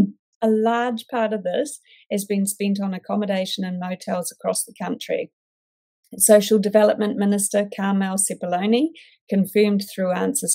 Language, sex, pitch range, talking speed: English, female, 185-220 Hz, 130 wpm